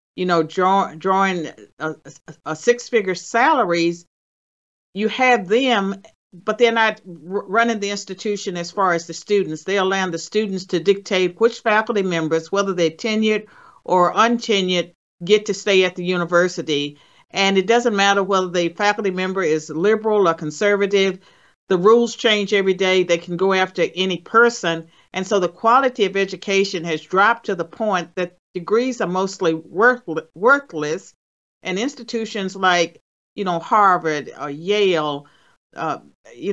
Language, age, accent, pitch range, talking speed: English, 50-69, American, 170-205 Hz, 150 wpm